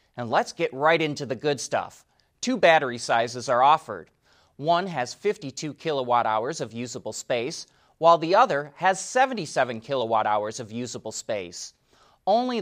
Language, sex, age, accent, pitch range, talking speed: English, male, 30-49, American, 125-170 Hz, 145 wpm